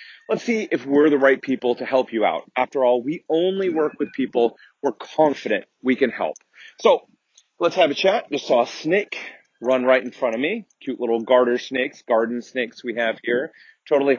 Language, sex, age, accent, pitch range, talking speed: English, male, 30-49, American, 125-190 Hz, 205 wpm